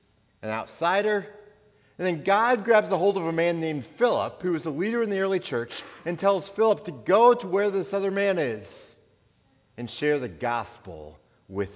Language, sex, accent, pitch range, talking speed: English, male, American, 120-185 Hz, 190 wpm